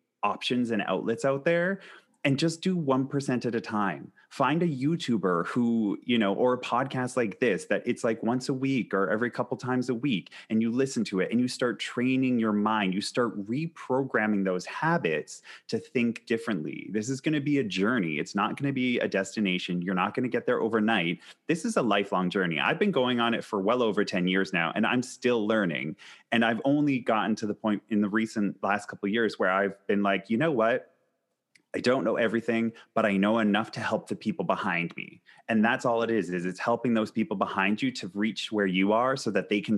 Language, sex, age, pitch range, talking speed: English, male, 30-49, 105-125 Hz, 230 wpm